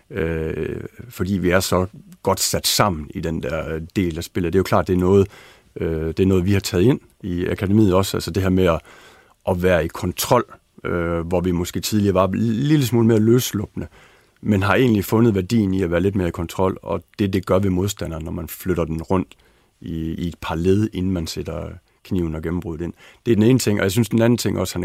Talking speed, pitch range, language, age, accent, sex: 240 wpm, 85-105 Hz, Danish, 60-79, native, male